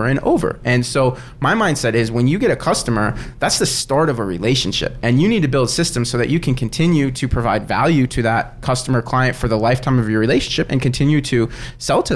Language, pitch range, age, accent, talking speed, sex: English, 115-135 Hz, 20-39, American, 230 wpm, male